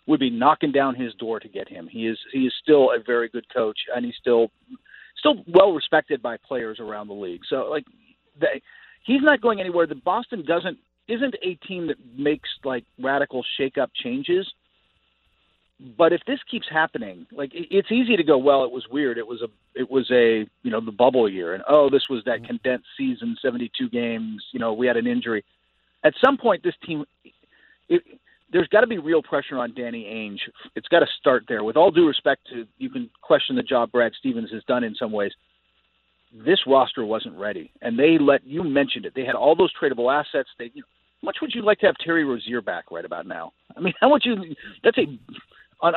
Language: English